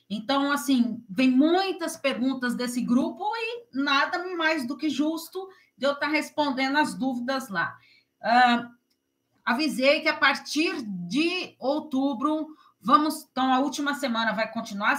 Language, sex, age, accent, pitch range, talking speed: Portuguese, female, 40-59, Brazilian, 250-305 Hz, 135 wpm